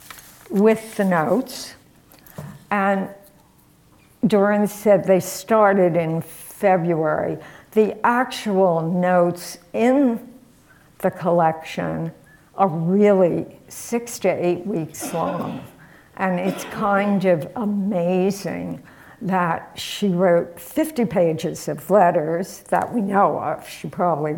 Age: 60-79